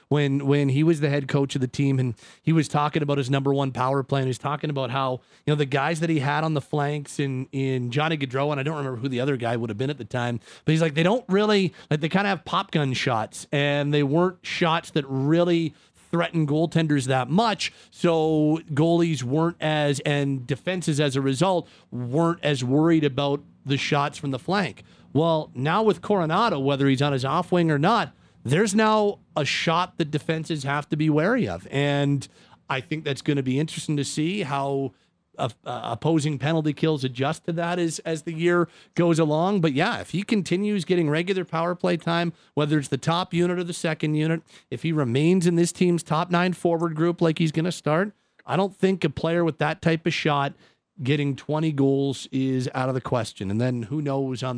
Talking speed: 220 wpm